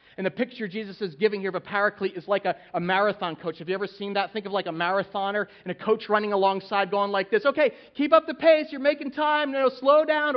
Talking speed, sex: 255 wpm, male